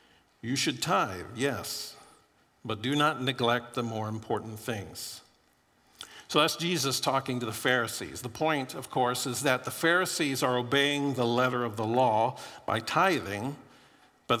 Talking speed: 155 wpm